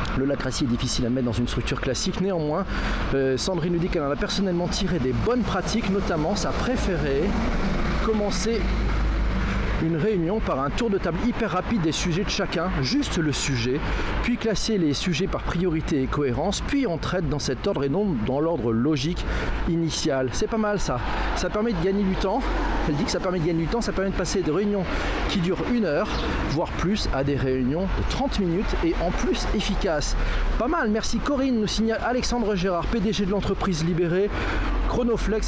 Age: 40-59